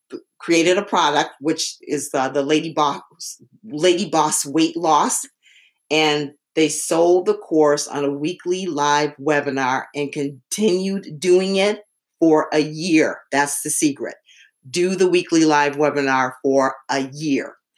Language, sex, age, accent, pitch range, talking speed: English, female, 50-69, American, 145-175 Hz, 140 wpm